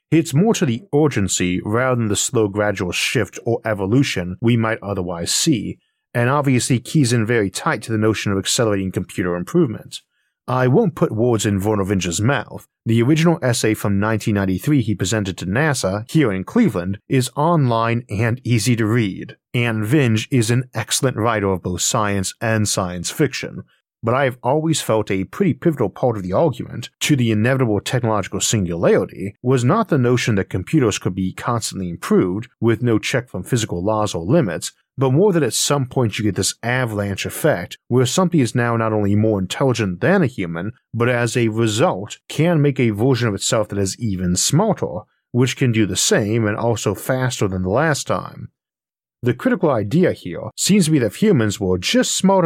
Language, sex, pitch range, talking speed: English, male, 100-130 Hz, 190 wpm